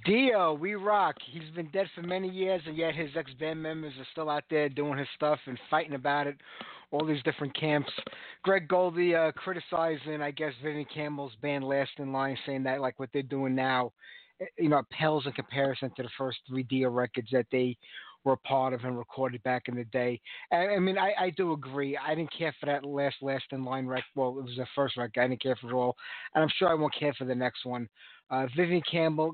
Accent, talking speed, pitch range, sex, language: American, 230 wpm, 130-155 Hz, male, English